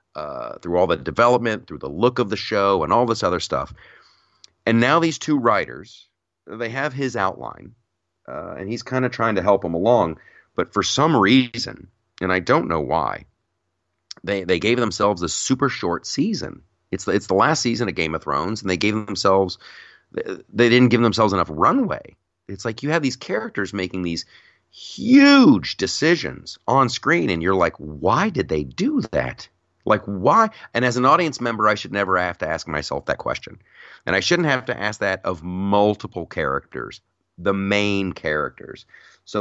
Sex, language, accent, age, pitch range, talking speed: male, English, American, 40-59, 90-120 Hz, 185 wpm